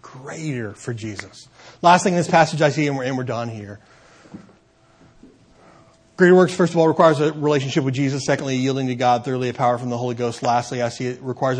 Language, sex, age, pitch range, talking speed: English, male, 30-49, 120-150 Hz, 215 wpm